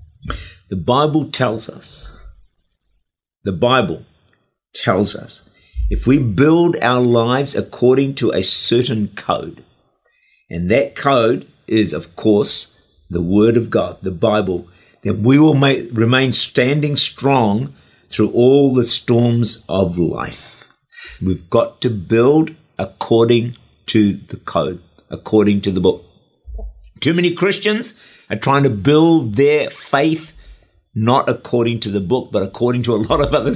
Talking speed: 135 wpm